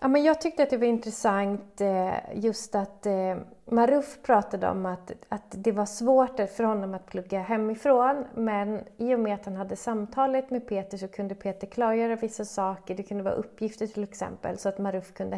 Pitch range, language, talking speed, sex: 190-225 Hz, Swedish, 185 wpm, female